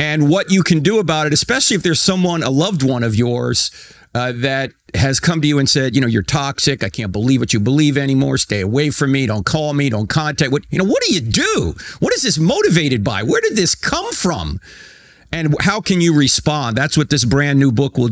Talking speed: 240 wpm